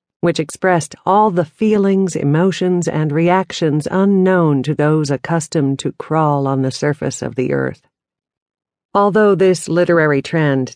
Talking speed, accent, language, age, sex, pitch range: 135 wpm, American, English, 50-69, female, 140-180 Hz